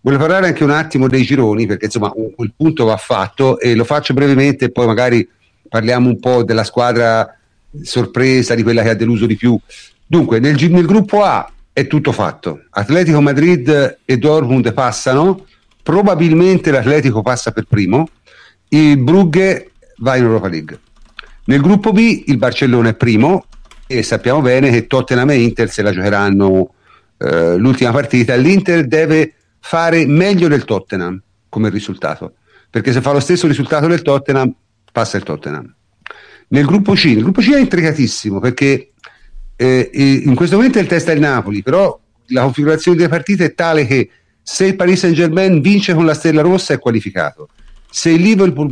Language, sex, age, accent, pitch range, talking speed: Italian, male, 50-69, native, 115-160 Hz, 170 wpm